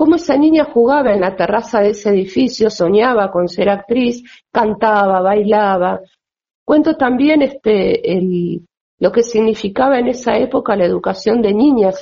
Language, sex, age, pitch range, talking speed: Spanish, female, 50-69, 180-260 Hz, 150 wpm